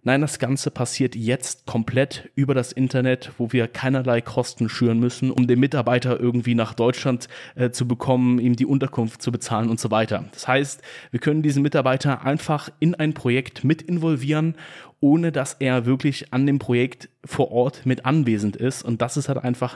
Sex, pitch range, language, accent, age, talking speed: male, 120-145 Hz, German, German, 30-49, 185 wpm